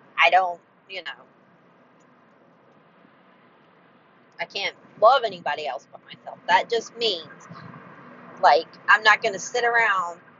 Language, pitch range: English, 195-255 Hz